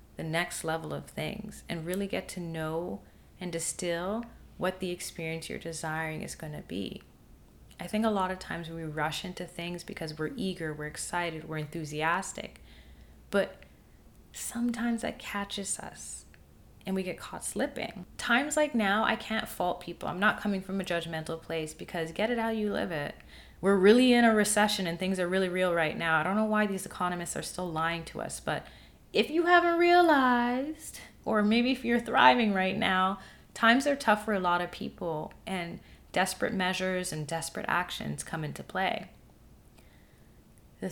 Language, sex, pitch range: English, female, 160-210 Hz